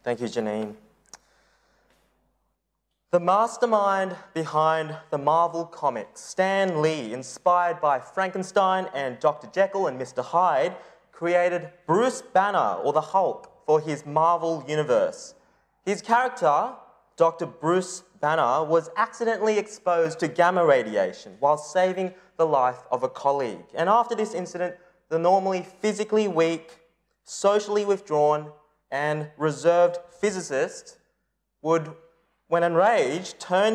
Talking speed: 115 wpm